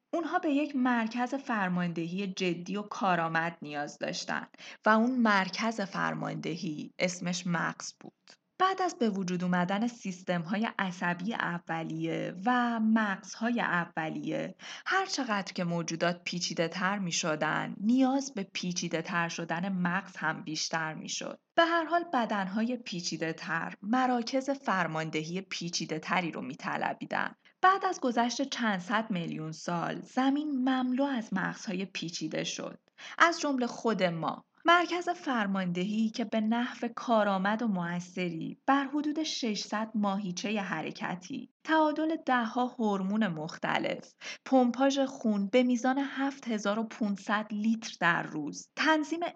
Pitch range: 180-255 Hz